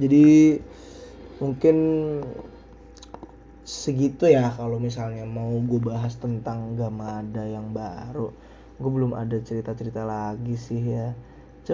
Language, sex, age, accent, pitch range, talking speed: Indonesian, male, 20-39, native, 125-165 Hz, 120 wpm